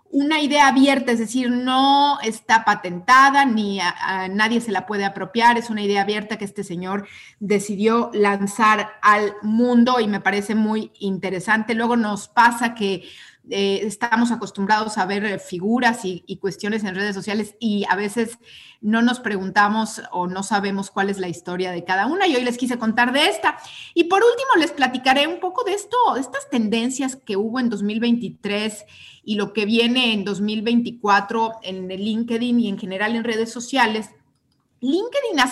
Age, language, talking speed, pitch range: 40-59, Spanish, 175 wpm, 200-245 Hz